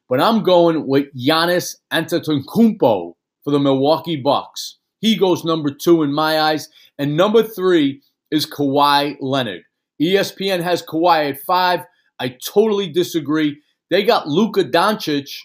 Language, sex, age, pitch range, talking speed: English, male, 40-59, 150-185 Hz, 135 wpm